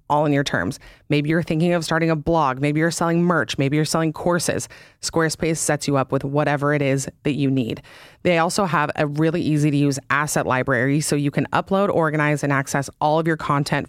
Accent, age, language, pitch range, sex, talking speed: American, 30-49, English, 140-165 Hz, female, 220 wpm